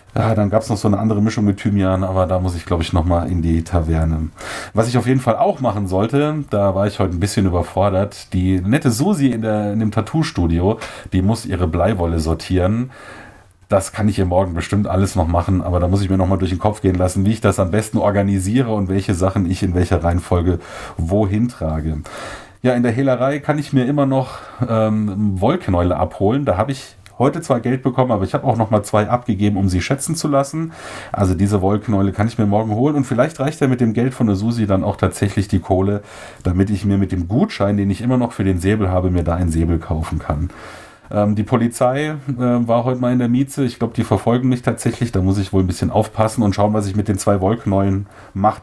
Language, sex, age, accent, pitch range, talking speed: German, male, 30-49, German, 95-120 Hz, 235 wpm